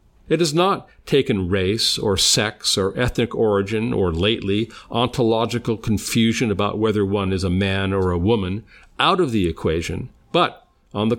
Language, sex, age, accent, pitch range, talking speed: English, male, 50-69, American, 105-140 Hz, 160 wpm